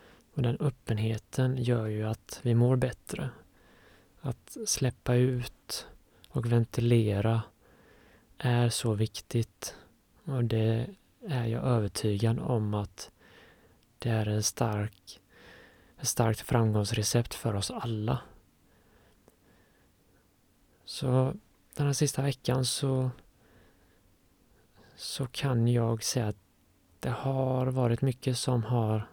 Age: 30-49